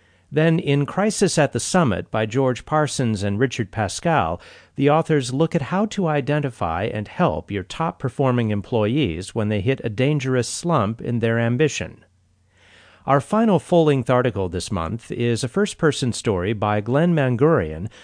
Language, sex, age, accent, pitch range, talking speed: English, male, 40-59, American, 100-145 Hz, 155 wpm